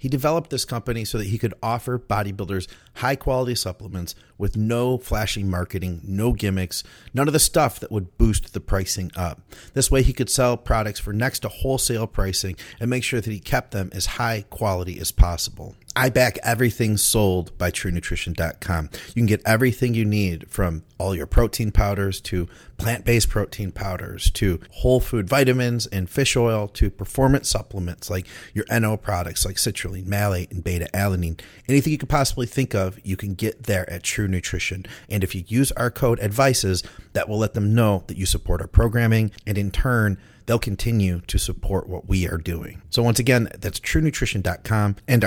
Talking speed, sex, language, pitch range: 185 wpm, male, English, 95-120 Hz